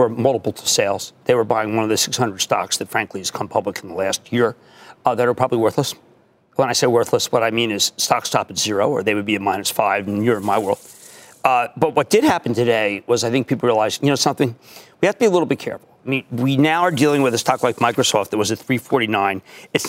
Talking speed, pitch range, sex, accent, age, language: 260 wpm, 120-190 Hz, male, American, 40-59, English